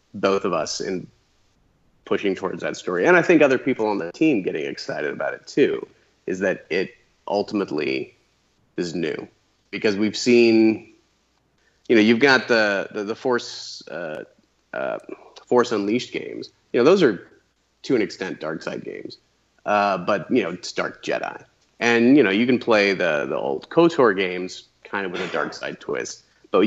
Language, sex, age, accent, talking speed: English, male, 30-49, American, 180 wpm